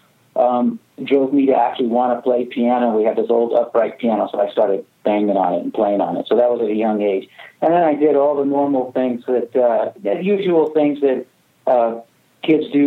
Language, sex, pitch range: English, male, 120-140 Hz